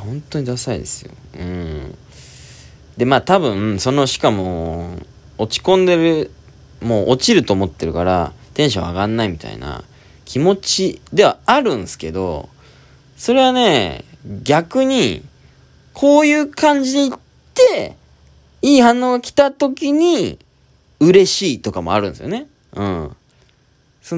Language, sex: Japanese, male